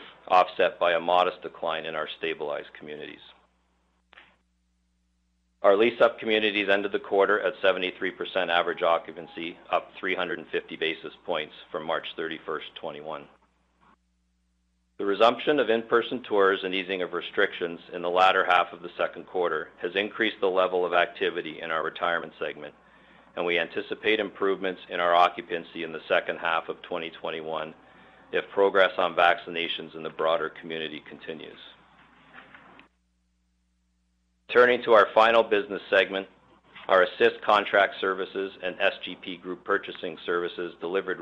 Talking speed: 135 wpm